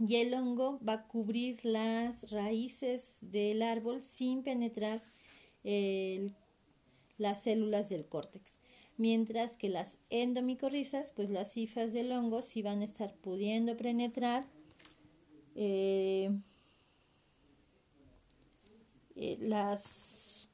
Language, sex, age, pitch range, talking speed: Spanish, female, 30-49, 205-245 Hz, 100 wpm